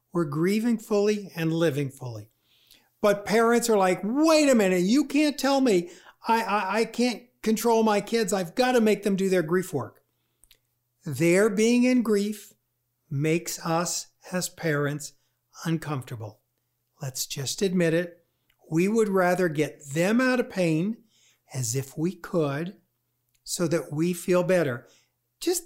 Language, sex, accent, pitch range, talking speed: English, male, American, 140-205 Hz, 150 wpm